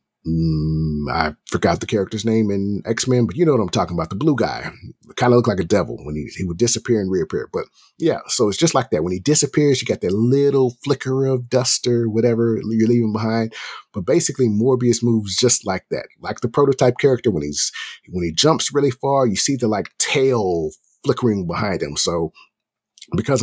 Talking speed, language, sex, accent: 205 wpm, English, male, American